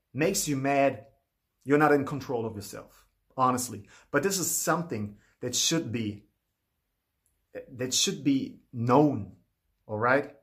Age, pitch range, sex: 30-49, 120-185 Hz, male